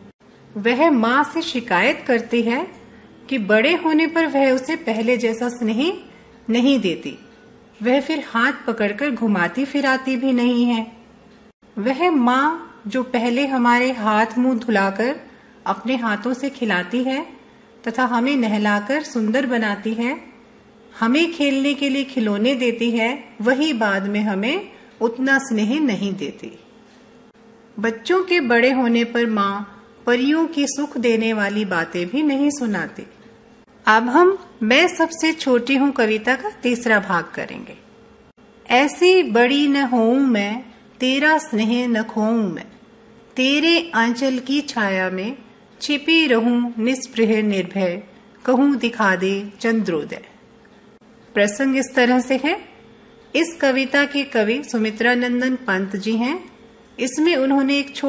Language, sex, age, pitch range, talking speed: English, female, 40-59, 225-270 Hz, 115 wpm